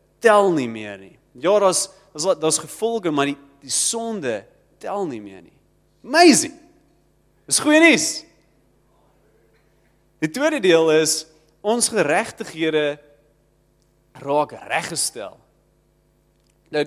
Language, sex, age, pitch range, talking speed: English, male, 30-49, 155-205 Hz, 105 wpm